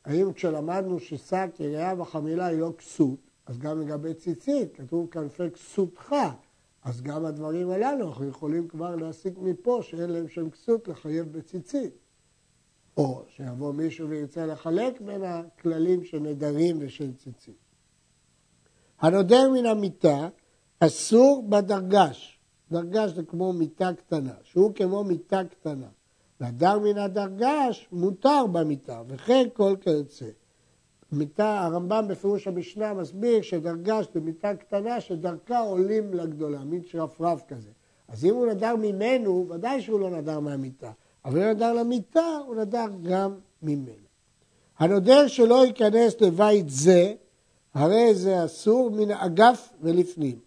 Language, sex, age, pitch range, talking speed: Hebrew, male, 60-79, 155-210 Hz, 125 wpm